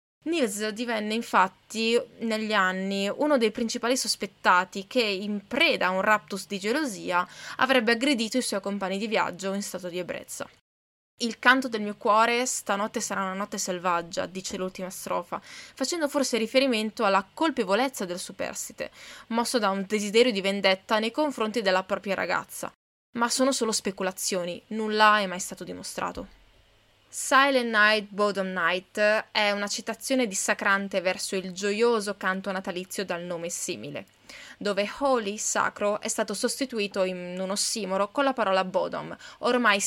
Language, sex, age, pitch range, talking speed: Italian, female, 20-39, 190-235 Hz, 150 wpm